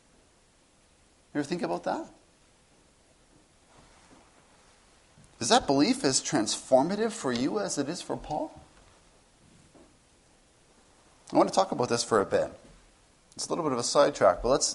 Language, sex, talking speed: English, male, 140 wpm